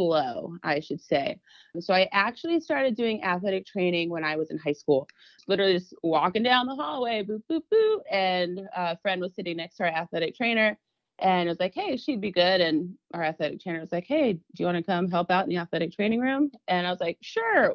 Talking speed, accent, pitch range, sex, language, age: 230 wpm, American, 160-205 Hz, female, English, 30-49